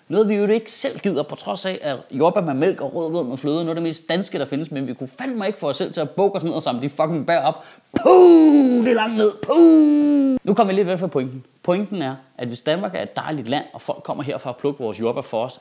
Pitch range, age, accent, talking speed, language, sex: 140-220 Hz, 30-49, native, 295 wpm, Danish, male